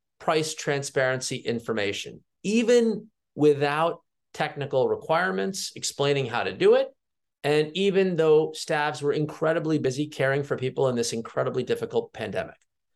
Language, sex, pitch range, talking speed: English, male, 135-190 Hz, 125 wpm